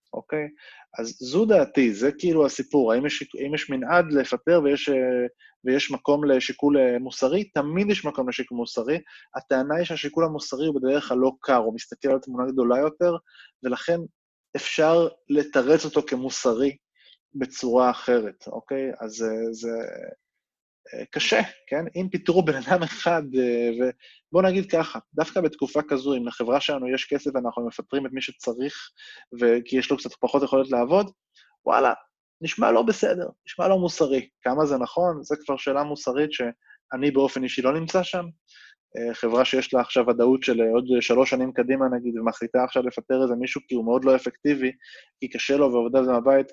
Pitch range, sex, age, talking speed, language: 125-150 Hz, male, 20-39, 160 wpm, Hebrew